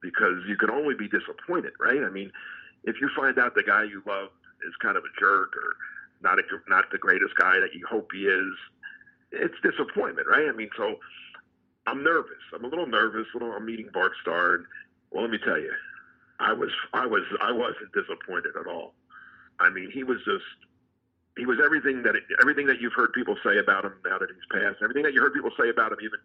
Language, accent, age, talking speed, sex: English, American, 50-69, 220 wpm, male